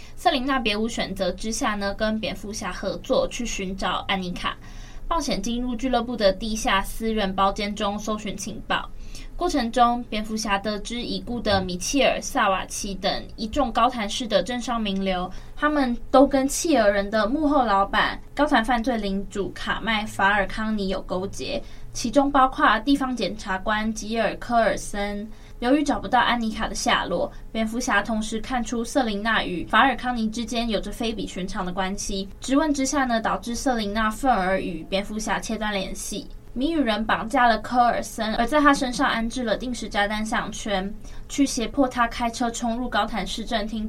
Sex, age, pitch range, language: female, 10-29, 200-250 Hz, Chinese